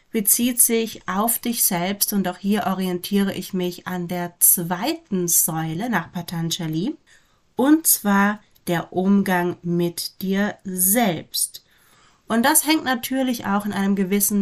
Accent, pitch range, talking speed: German, 180-225 Hz, 135 wpm